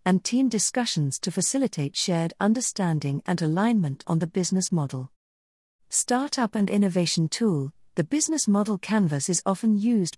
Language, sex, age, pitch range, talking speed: English, female, 40-59, 155-220 Hz, 140 wpm